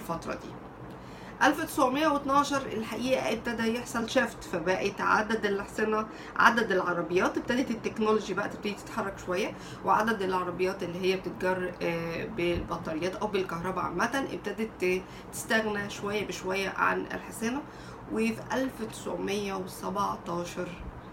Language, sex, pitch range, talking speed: Arabic, female, 175-215 Hz, 100 wpm